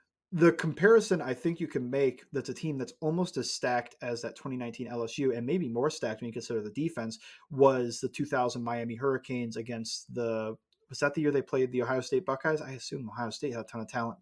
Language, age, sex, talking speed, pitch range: English, 30-49, male, 225 wpm, 120-150 Hz